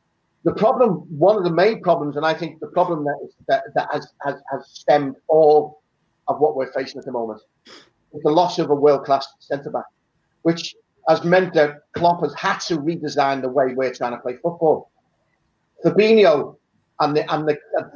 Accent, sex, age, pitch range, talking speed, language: British, male, 30-49, 145-175 Hz, 180 wpm, English